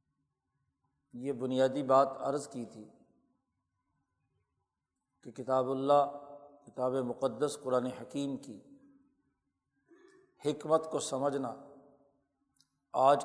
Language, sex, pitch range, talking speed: Urdu, male, 130-150 Hz, 80 wpm